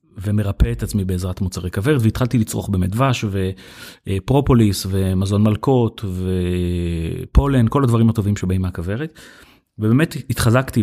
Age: 30-49